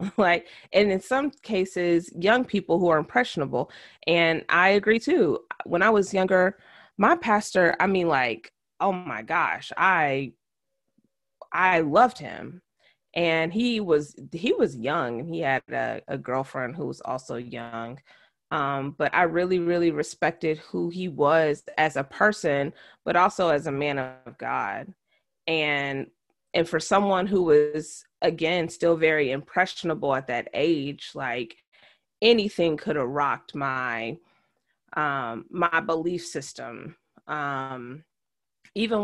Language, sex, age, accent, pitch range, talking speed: English, female, 20-39, American, 140-185 Hz, 135 wpm